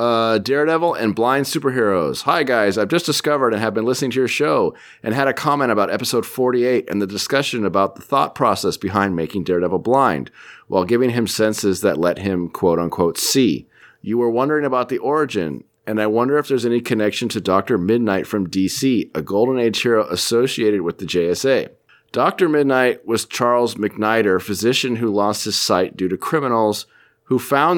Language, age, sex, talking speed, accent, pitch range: English, 40-59, male, 185 wpm, American, 100-120 Hz